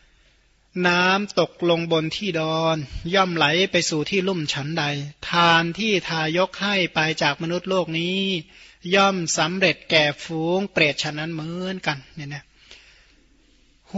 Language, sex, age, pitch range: Thai, male, 20-39, 155-180 Hz